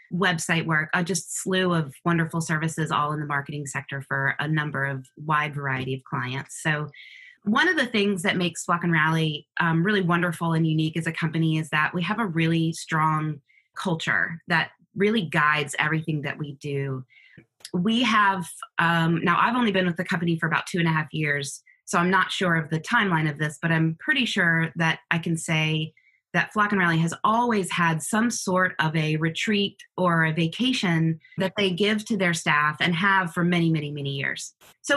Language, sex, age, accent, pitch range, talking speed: English, female, 20-39, American, 155-190 Hz, 200 wpm